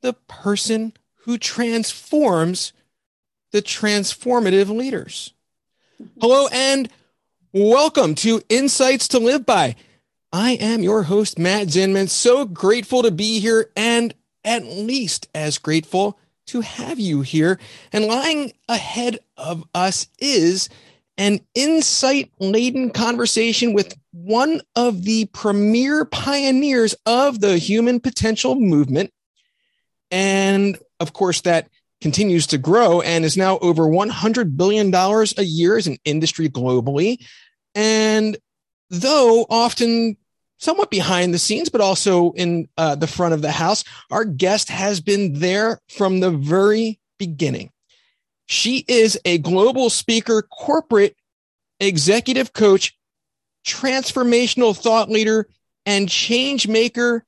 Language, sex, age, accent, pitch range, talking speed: English, male, 30-49, American, 185-240 Hz, 120 wpm